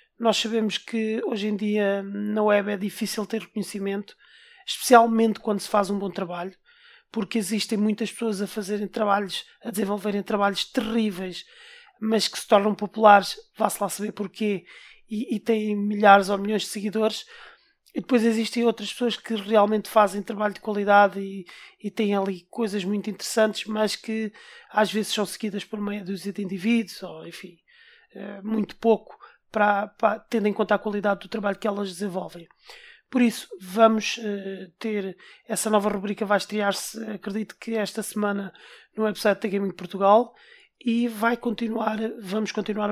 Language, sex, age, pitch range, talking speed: Portuguese, male, 20-39, 200-225 Hz, 155 wpm